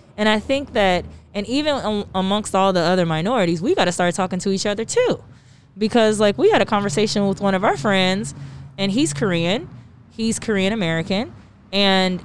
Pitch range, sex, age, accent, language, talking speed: 165-225 Hz, female, 20-39, American, English, 185 wpm